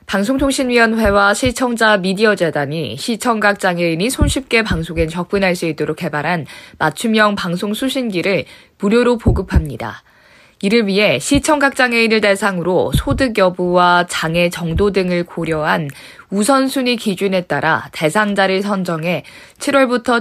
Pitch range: 180-255 Hz